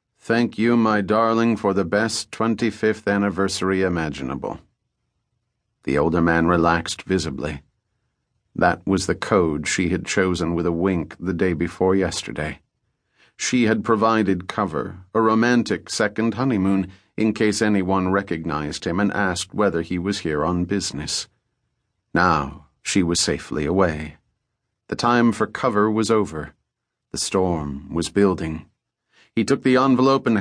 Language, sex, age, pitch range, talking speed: English, male, 40-59, 90-115 Hz, 140 wpm